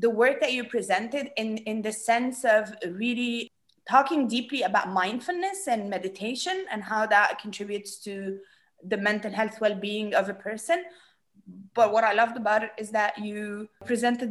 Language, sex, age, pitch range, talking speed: Arabic, female, 20-39, 185-240 Hz, 165 wpm